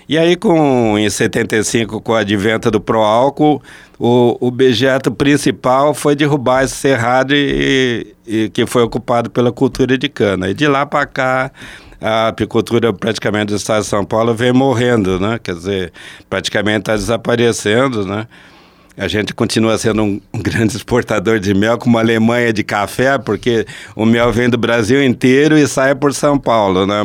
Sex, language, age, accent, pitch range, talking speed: male, Portuguese, 60-79, Brazilian, 100-125 Hz, 170 wpm